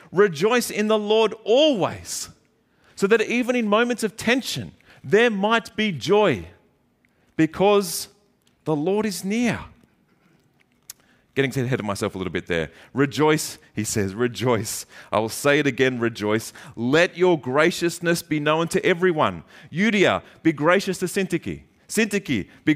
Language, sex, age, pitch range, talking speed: English, male, 30-49, 135-190 Hz, 140 wpm